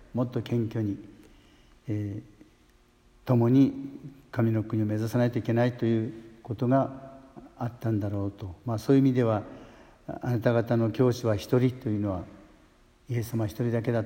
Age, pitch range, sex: 60-79, 105-125 Hz, male